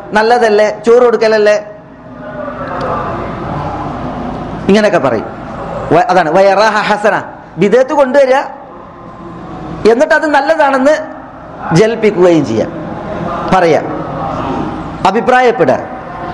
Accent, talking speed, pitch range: native, 55 wpm, 170-265 Hz